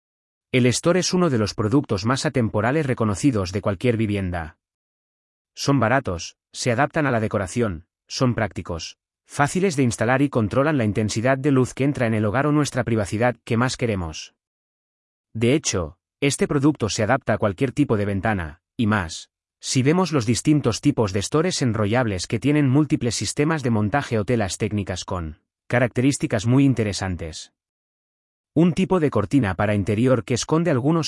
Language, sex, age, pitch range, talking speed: Spanish, male, 30-49, 100-140 Hz, 165 wpm